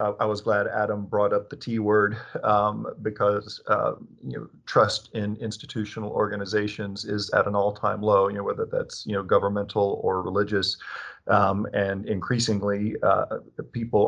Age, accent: 40-59, American